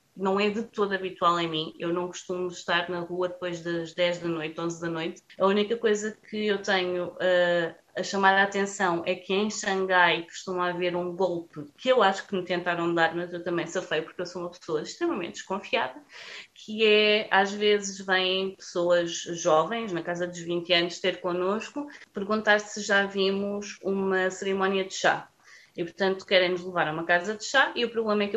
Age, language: 20-39, Portuguese